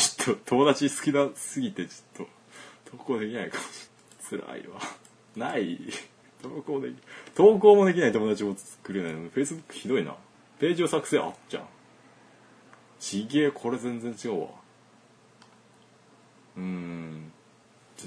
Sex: male